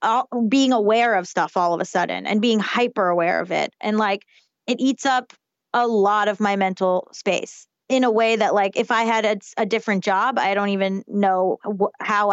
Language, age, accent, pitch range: English, 20-39, American, 200-230 Hz